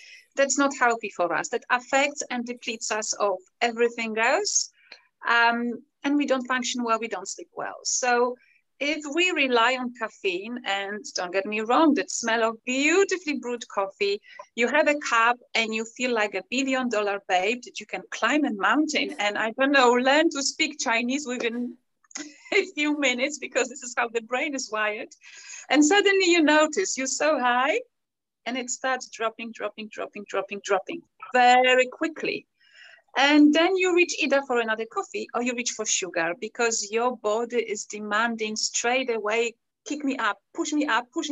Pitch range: 225-295 Hz